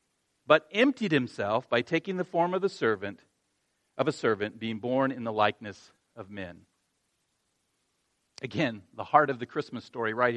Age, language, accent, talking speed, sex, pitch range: 40-59, English, American, 160 wpm, male, 120-185 Hz